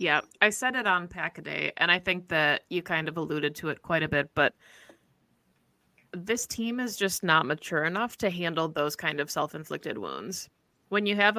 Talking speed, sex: 195 wpm, female